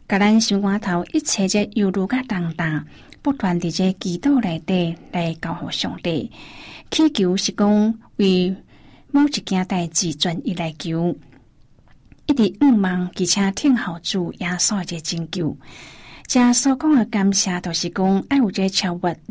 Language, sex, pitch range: Chinese, female, 175-215 Hz